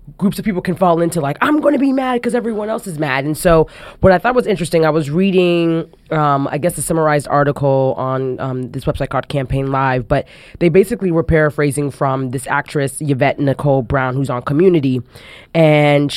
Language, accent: English, American